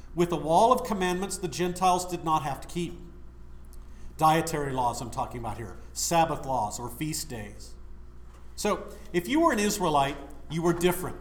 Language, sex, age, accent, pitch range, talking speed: English, male, 50-69, American, 130-190 Hz, 170 wpm